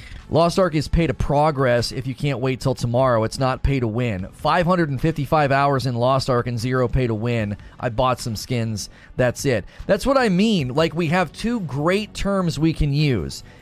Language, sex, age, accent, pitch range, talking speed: English, male, 30-49, American, 120-155 Hz, 205 wpm